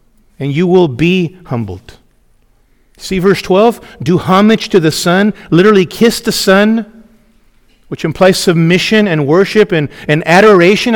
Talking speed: 135 wpm